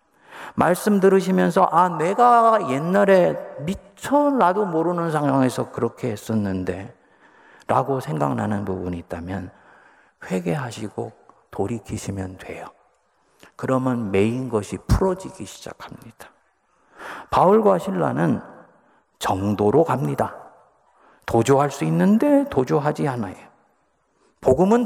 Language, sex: Korean, male